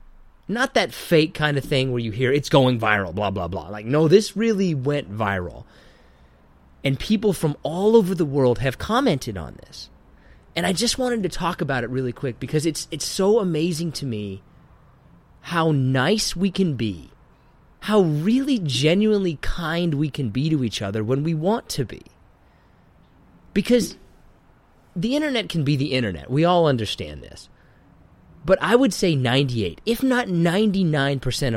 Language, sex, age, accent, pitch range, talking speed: English, male, 30-49, American, 115-185 Hz, 165 wpm